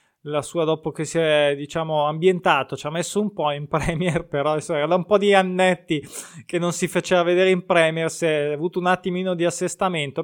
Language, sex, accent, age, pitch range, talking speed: Italian, male, native, 20-39, 155-190 Hz, 205 wpm